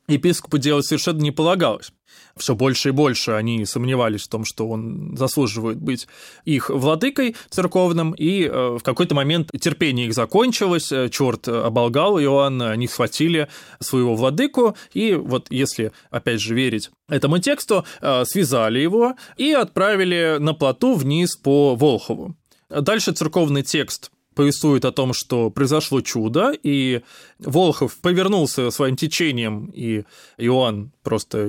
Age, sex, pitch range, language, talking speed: 20-39, male, 125-165 Hz, Russian, 130 wpm